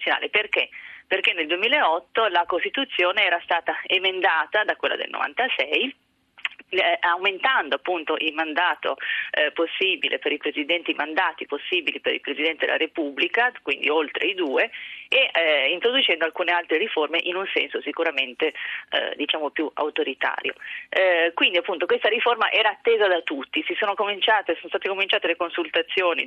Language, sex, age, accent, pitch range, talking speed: Italian, female, 30-49, native, 160-250 Hz, 150 wpm